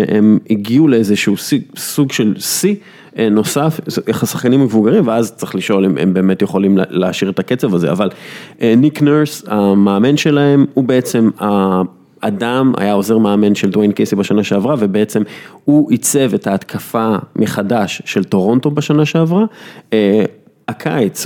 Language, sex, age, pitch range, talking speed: English, male, 30-49, 100-140 Hz, 110 wpm